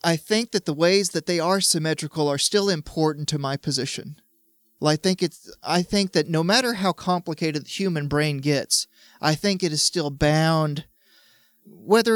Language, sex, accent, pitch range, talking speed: English, male, American, 145-175 Hz, 185 wpm